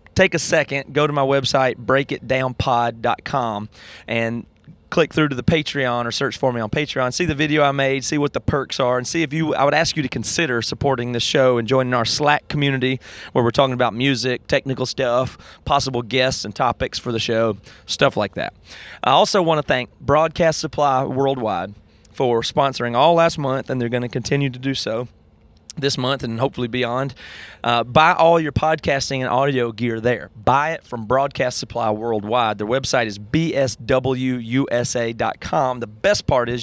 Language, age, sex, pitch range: English, 30-49, male, 120-145 Hz